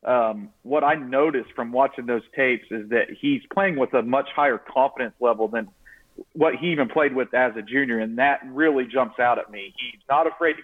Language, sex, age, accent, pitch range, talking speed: English, male, 40-59, American, 125-155 Hz, 215 wpm